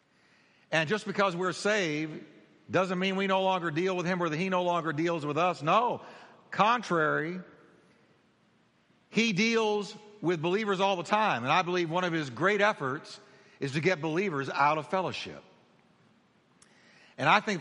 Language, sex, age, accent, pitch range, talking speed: English, male, 60-79, American, 155-200 Hz, 165 wpm